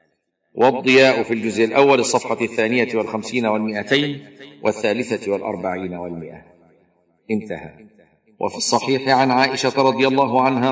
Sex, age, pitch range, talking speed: male, 50-69, 105-130 Hz, 105 wpm